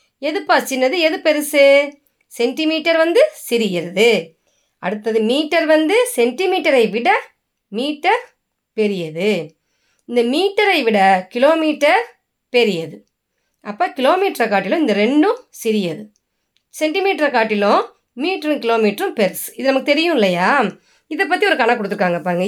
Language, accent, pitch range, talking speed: Tamil, native, 210-310 Hz, 100 wpm